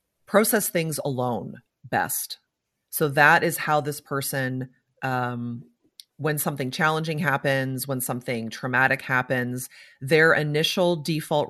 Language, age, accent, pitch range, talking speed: English, 30-49, American, 135-180 Hz, 115 wpm